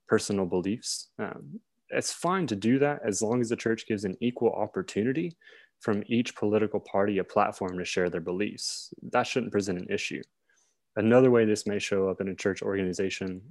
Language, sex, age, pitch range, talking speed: English, male, 20-39, 95-120 Hz, 185 wpm